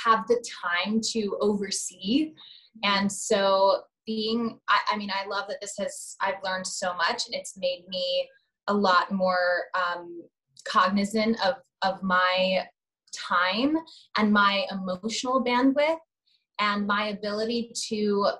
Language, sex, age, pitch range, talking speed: English, female, 20-39, 195-235 Hz, 135 wpm